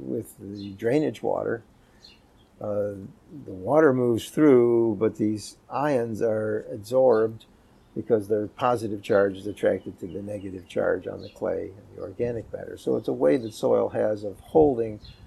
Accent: American